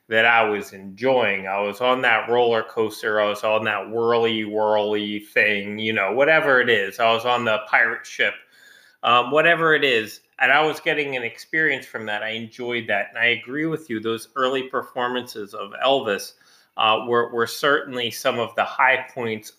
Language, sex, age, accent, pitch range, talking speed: English, male, 30-49, American, 100-120 Hz, 190 wpm